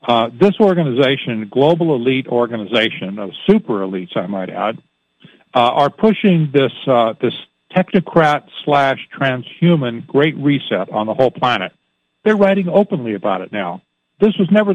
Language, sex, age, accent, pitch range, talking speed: English, male, 60-79, American, 120-155 Hz, 140 wpm